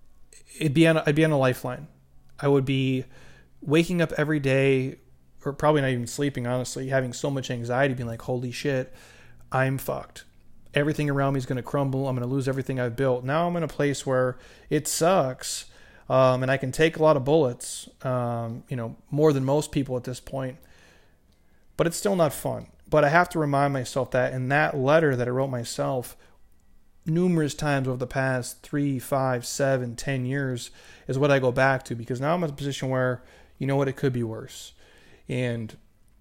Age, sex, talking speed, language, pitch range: 30-49, male, 200 wpm, English, 125-145 Hz